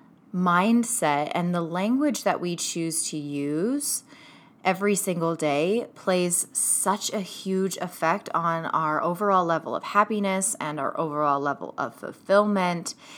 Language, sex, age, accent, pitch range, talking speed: English, female, 20-39, American, 160-225 Hz, 130 wpm